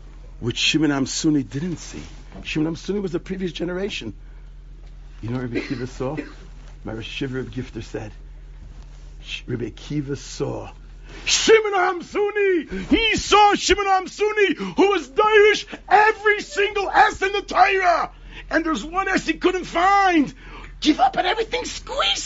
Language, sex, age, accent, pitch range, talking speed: English, male, 60-79, American, 320-400 Hz, 145 wpm